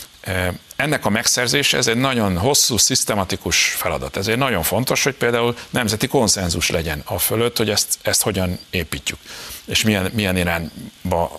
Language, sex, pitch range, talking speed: Hungarian, male, 85-105 Hz, 150 wpm